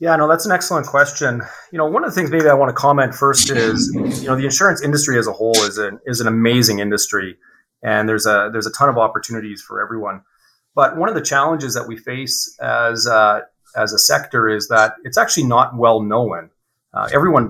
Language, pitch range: English, 110-130 Hz